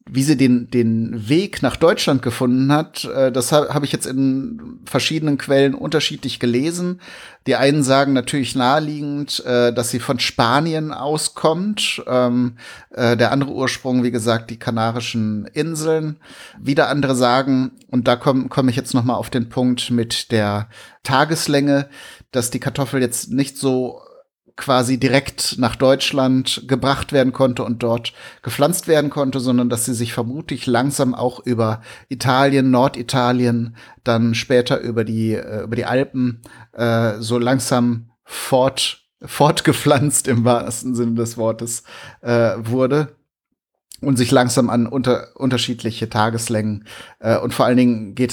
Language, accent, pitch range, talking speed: German, German, 120-140 Hz, 140 wpm